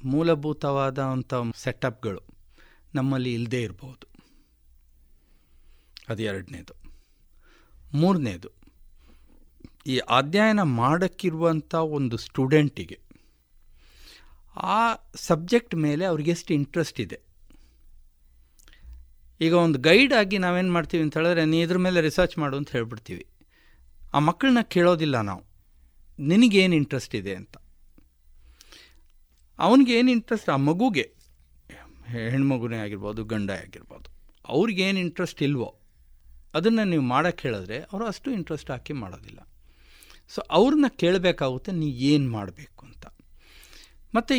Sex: male